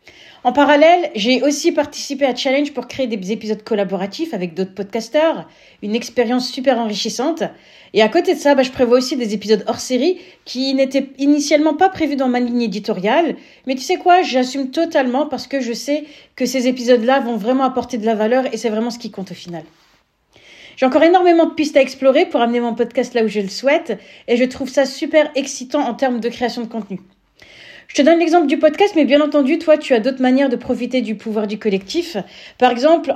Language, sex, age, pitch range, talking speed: French, female, 40-59, 230-295 Hz, 215 wpm